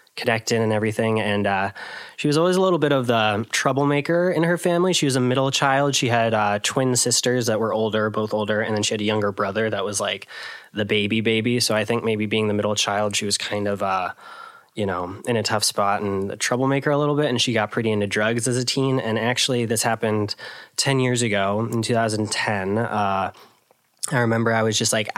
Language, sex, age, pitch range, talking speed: English, male, 20-39, 105-120 Hz, 225 wpm